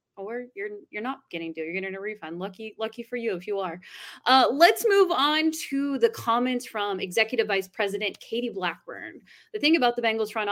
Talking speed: 205 wpm